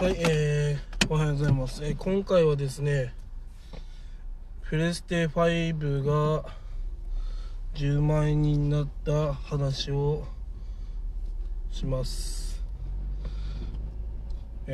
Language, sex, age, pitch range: Japanese, male, 20-39, 130-160 Hz